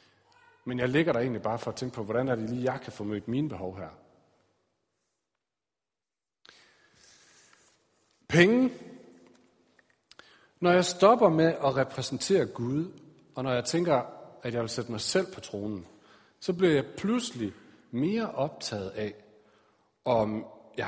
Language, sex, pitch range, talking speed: Danish, male, 110-155 Hz, 145 wpm